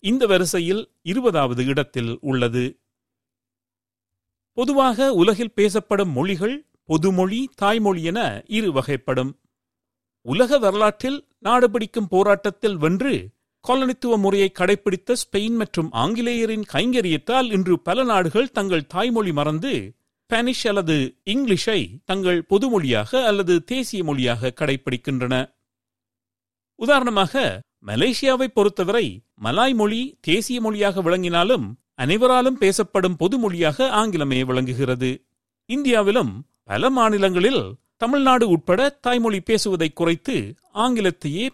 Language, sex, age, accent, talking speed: Tamil, male, 50-69, native, 90 wpm